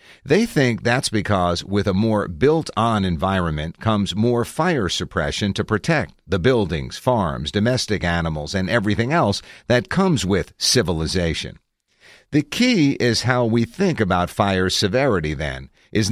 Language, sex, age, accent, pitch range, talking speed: English, male, 50-69, American, 90-120 Hz, 140 wpm